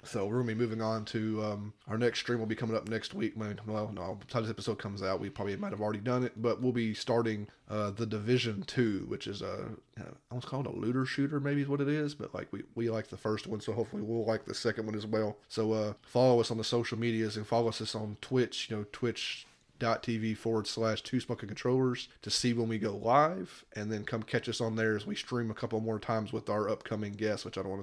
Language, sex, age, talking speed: English, male, 20-39, 260 wpm